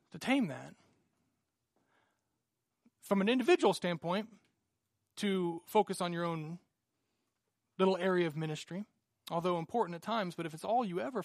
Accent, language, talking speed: American, English, 135 wpm